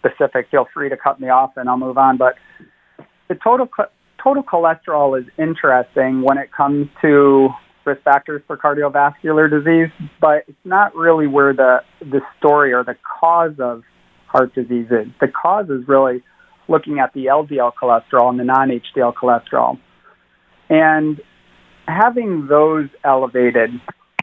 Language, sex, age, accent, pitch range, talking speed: English, male, 40-59, American, 130-160 Hz, 145 wpm